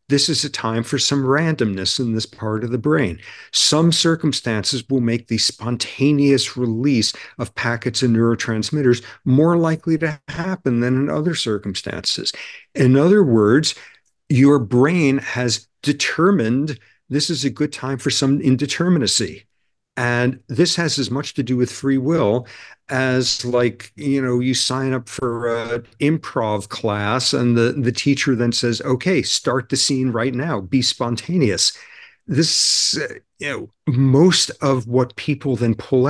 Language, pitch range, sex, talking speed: English, 120-145 Hz, male, 150 wpm